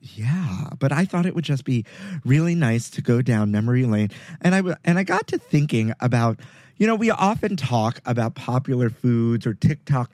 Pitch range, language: 120-160 Hz, English